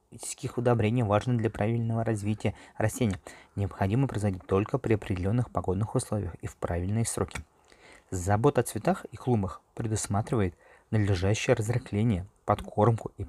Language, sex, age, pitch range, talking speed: Russian, male, 20-39, 95-115 Hz, 125 wpm